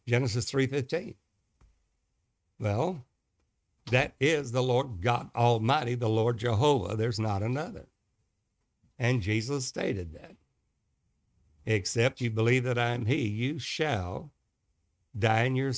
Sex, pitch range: male, 110-130 Hz